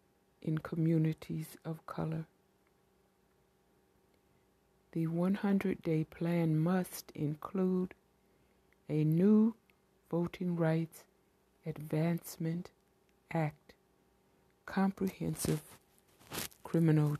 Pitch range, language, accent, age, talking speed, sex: 155-180 Hz, English, American, 60-79, 60 wpm, female